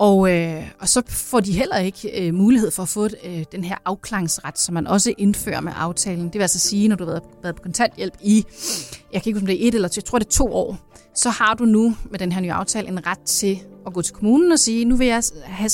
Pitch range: 175-215 Hz